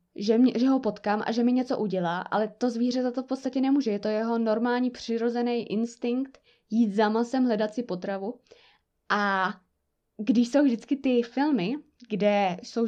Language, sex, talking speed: Czech, female, 170 wpm